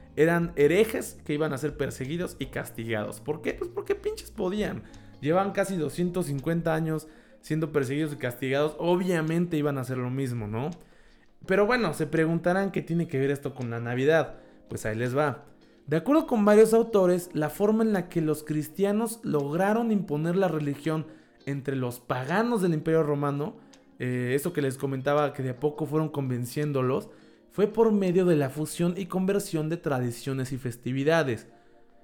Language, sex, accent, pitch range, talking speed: Spanish, male, Mexican, 140-190 Hz, 170 wpm